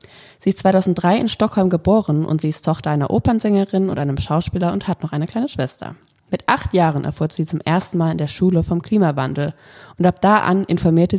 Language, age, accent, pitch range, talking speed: German, 20-39, German, 150-185 Hz, 210 wpm